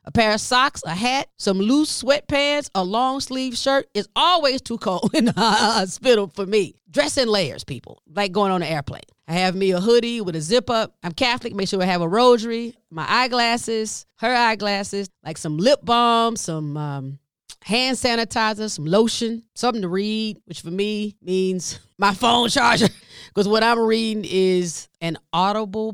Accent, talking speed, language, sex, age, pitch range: American, 185 wpm, English, female, 30-49, 170-235 Hz